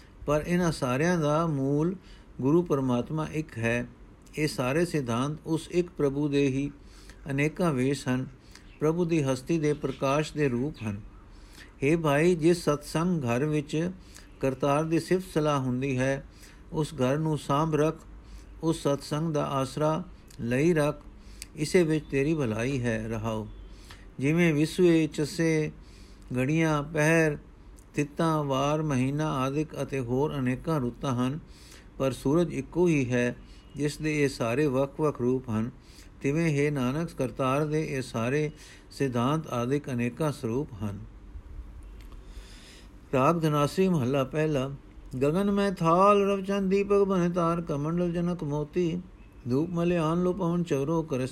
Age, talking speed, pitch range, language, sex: 50-69, 130 wpm, 125-160 Hz, Punjabi, male